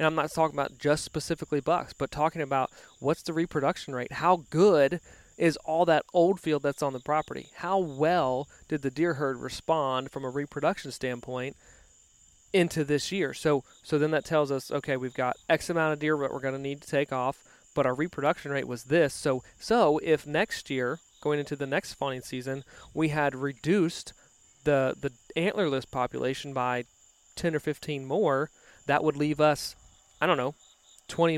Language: English